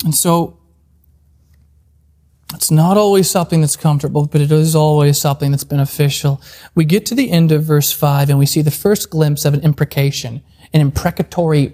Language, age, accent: English, 30-49, American